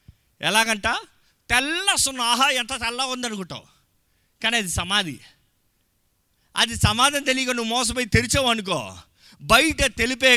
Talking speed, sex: 110 wpm, male